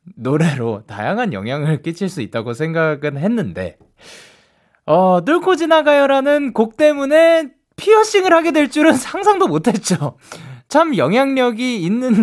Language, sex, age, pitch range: Korean, male, 20-39, 130-205 Hz